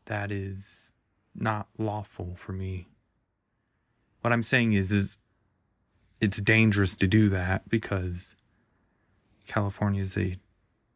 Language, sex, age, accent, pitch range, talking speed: English, male, 20-39, American, 95-110 Hz, 110 wpm